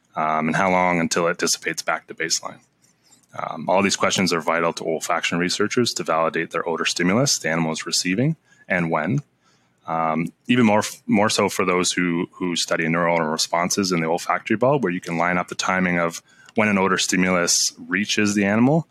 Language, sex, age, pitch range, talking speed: English, male, 20-39, 80-95 Hz, 195 wpm